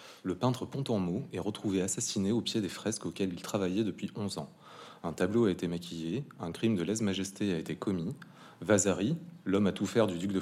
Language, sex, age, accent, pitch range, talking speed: French, male, 30-49, French, 95-115 Hz, 215 wpm